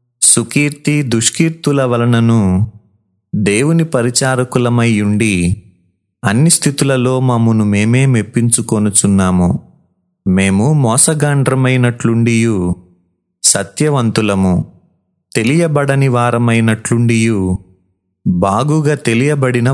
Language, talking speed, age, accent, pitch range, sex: Telugu, 50 wpm, 30-49, native, 100-135 Hz, male